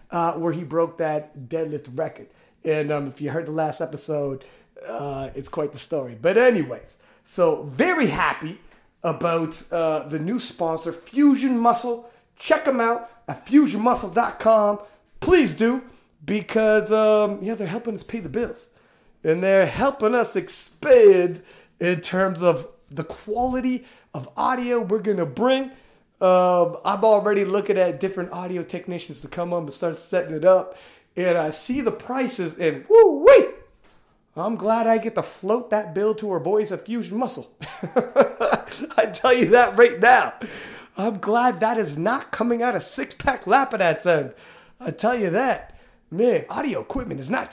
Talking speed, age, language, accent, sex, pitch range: 160 wpm, 30-49, English, American, male, 170-240 Hz